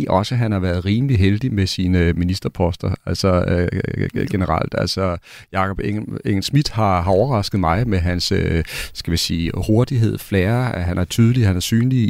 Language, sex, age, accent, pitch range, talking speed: Danish, male, 40-59, native, 90-115 Hz, 175 wpm